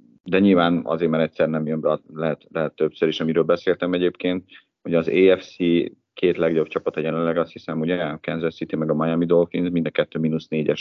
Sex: male